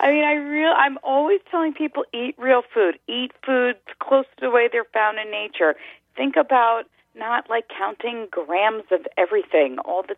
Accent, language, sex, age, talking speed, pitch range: American, English, female, 40-59, 185 wpm, 180-285 Hz